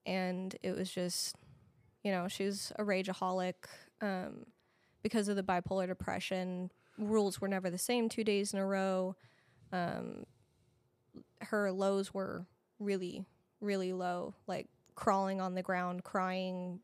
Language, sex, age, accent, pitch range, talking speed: English, female, 20-39, American, 180-200 Hz, 140 wpm